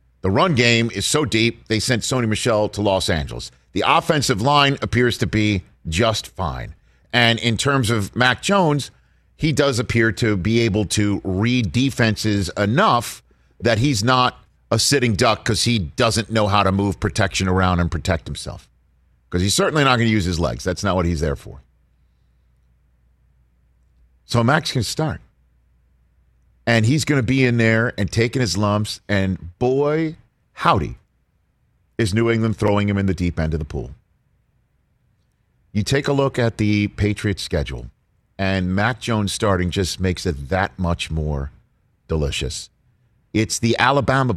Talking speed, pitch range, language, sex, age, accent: 165 wpm, 85-120 Hz, English, male, 50-69, American